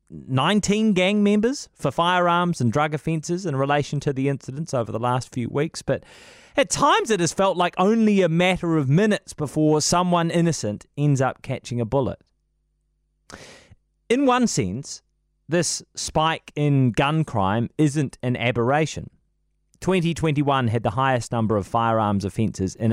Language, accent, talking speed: English, Australian, 150 wpm